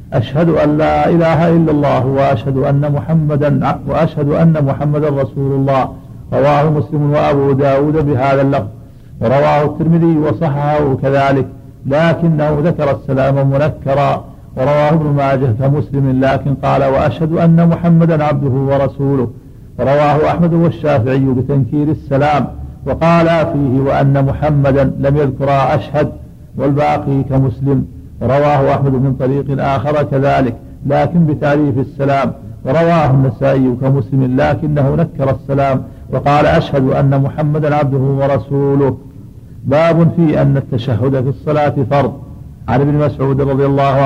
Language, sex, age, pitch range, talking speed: Arabic, male, 50-69, 135-150 Hz, 115 wpm